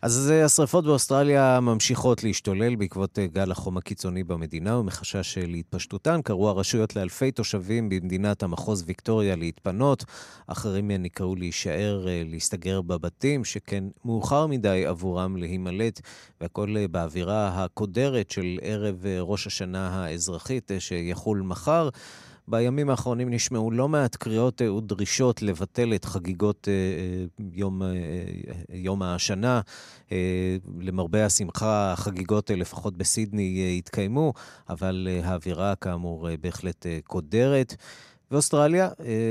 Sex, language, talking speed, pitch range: male, Hebrew, 100 wpm, 90-120 Hz